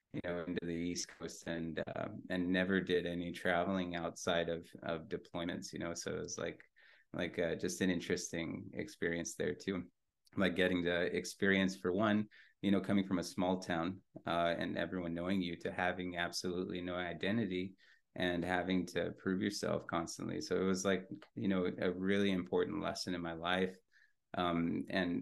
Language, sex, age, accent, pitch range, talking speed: English, male, 30-49, American, 85-95 Hz, 180 wpm